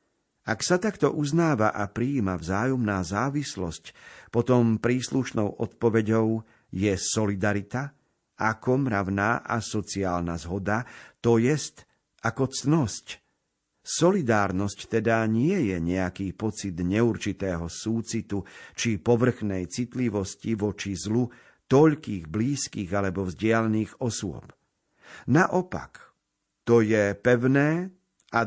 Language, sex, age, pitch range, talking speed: Slovak, male, 50-69, 100-130 Hz, 95 wpm